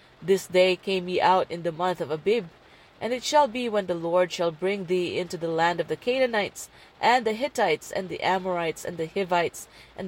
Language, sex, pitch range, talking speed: English, female, 175-210 Hz, 215 wpm